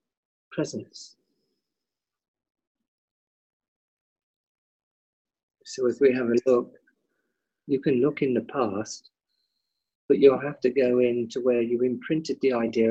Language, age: English, 50-69